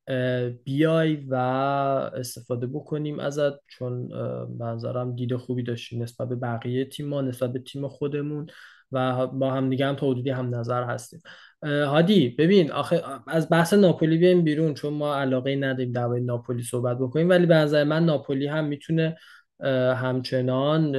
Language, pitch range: Persian, 125-150 Hz